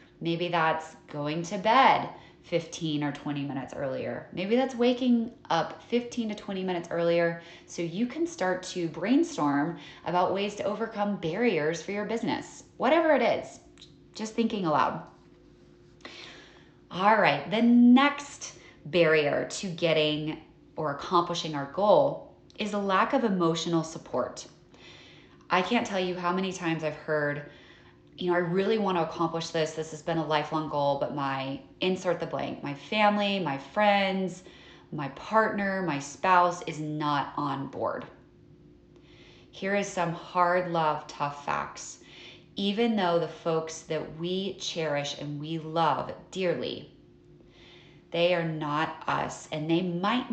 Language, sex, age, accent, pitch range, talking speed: English, female, 20-39, American, 155-195 Hz, 145 wpm